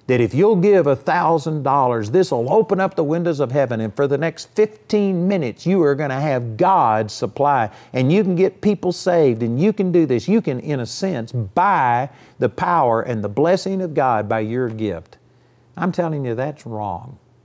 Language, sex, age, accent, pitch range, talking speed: English, male, 50-69, American, 125-180 Hz, 200 wpm